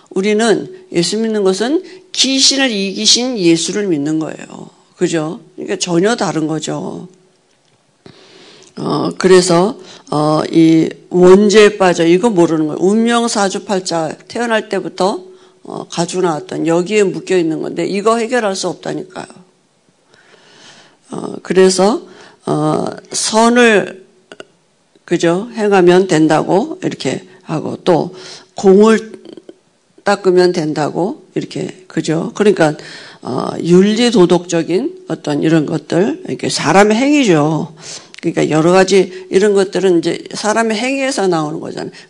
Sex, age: female, 50-69